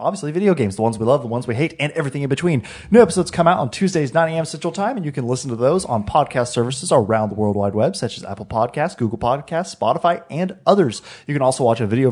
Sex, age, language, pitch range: male, 30-49, English, 110-160 Hz